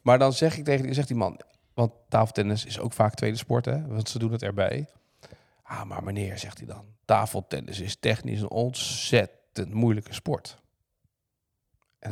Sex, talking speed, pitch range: male, 180 wpm, 110-150 Hz